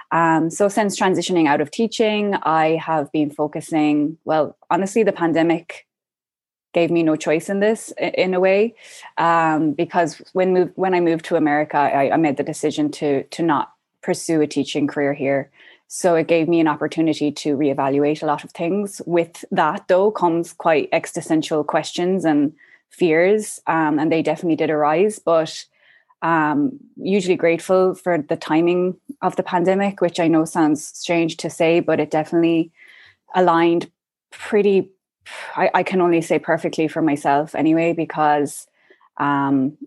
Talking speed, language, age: 160 wpm, English, 20-39